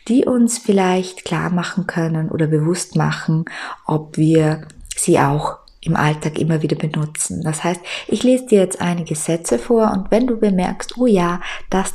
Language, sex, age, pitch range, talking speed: German, female, 20-39, 160-195 Hz, 170 wpm